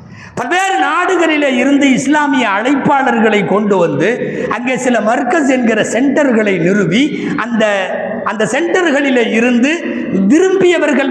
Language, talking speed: Tamil, 95 wpm